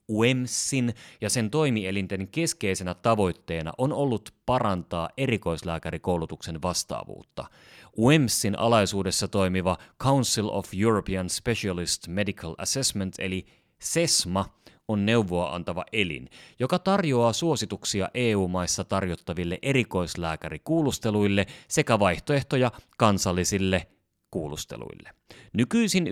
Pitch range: 90-125 Hz